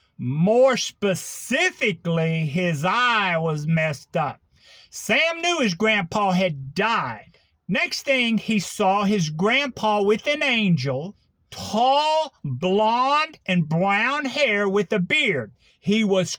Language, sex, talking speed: English, male, 115 wpm